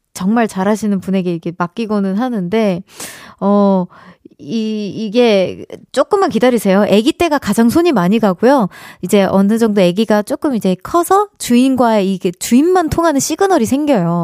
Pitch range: 195-270 Hz